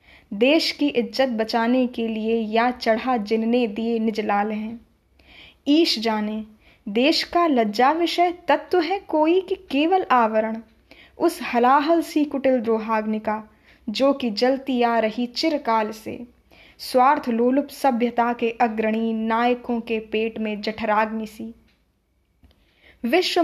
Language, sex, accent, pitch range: Hindi, female, native, 225-295 Hz